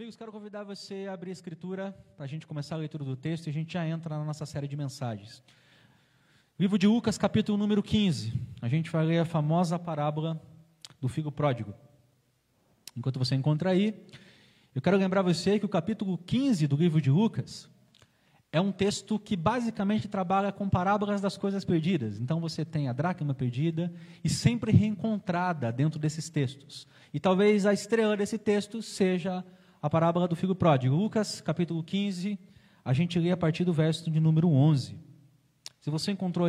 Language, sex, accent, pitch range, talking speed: Portuguese, male, Brazilian, 150-195 Hz, 180 wpm